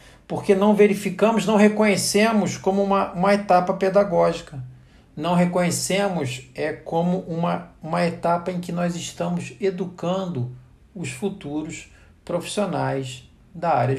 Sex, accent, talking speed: male, Brazilian, 115 wpm